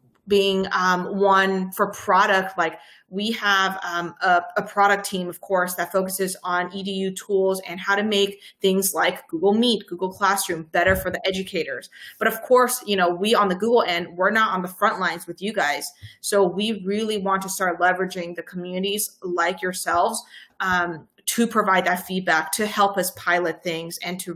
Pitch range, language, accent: 180-200 Hz, English, American